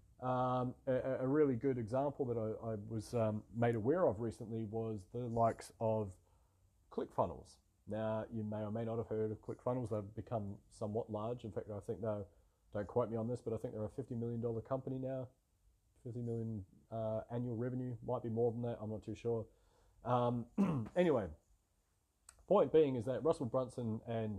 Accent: Australian